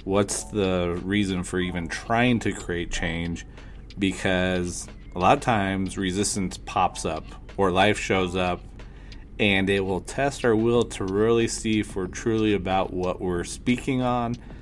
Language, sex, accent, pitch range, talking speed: English, male, American, 95-110 Hz, 155 wpm